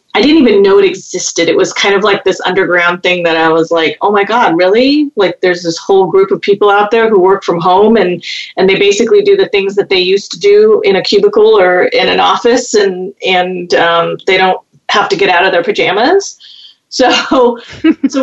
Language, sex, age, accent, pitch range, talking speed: English, female, 30-49, American, 185-280 Hz, 225 wpm